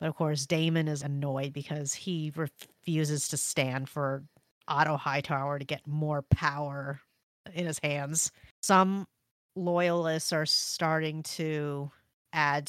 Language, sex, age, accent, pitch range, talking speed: English, female, 30-49, American, 140-160 Hz, 130 wpm